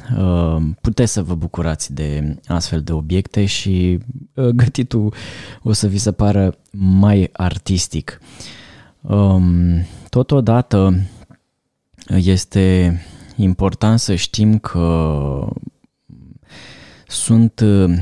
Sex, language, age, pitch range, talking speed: male, Romanian, 20-39, 85-105 Hz, 80 wpm